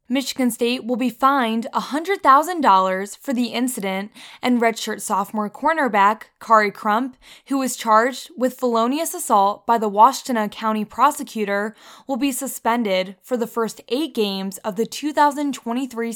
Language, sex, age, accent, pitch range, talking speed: English, female, 20-39, American, 210-265 Hz, 135 wpm